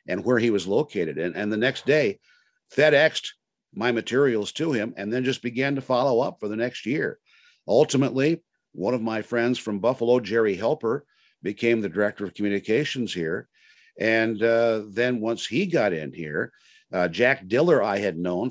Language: English